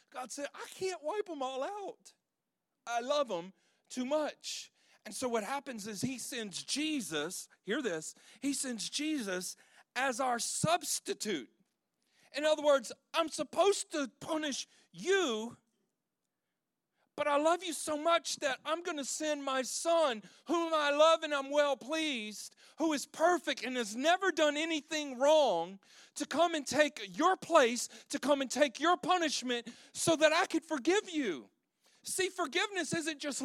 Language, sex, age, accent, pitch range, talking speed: English, male, 40-59, American, 255-335 Hz, 160 wpm